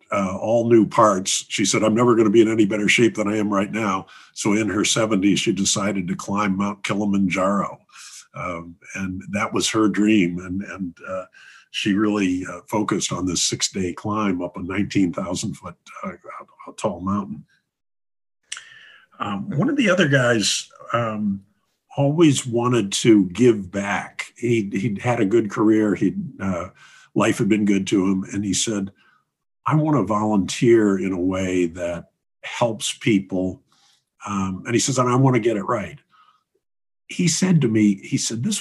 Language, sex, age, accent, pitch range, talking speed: English, male, 50-69, American, 100-125 Hz, 170 wpm